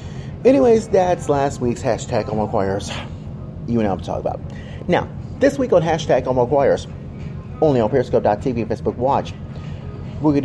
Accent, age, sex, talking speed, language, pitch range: American, 30-49, male, 160 wpm, English, 115-145 Hz